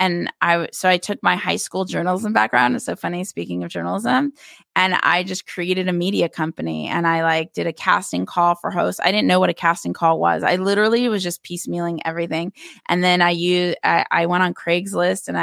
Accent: American